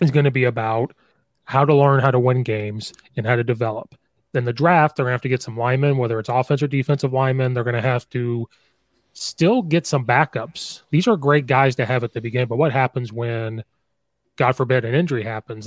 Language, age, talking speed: English, 30-49, 230 wpm